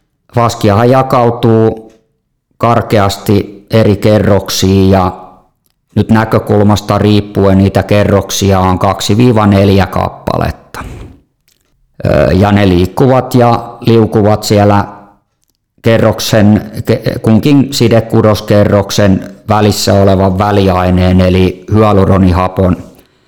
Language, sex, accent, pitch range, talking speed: Finnish, male, native, 100-115 Hz, 70 wpm